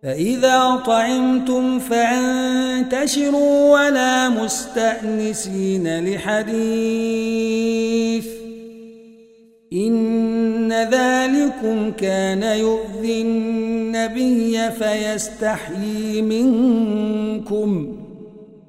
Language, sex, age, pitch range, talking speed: Arabic, male, 50-69, 220-260 Hz, 40 wpm